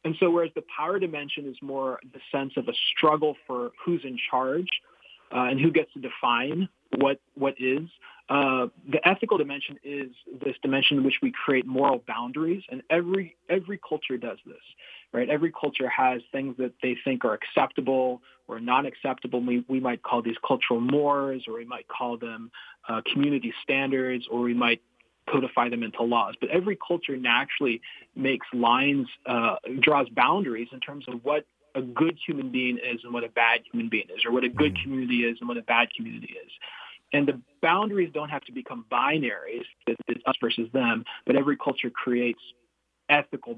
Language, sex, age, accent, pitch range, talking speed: English, male, 30-49, American, 125-155 Hz, 185 wpm